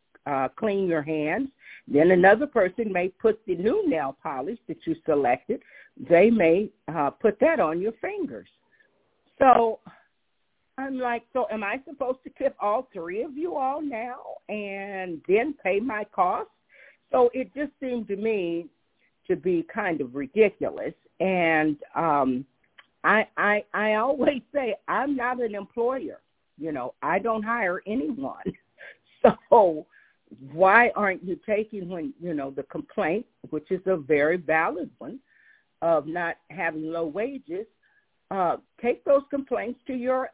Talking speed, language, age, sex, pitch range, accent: 150 wpm, English, 50-69, female, 170-265 Hz, American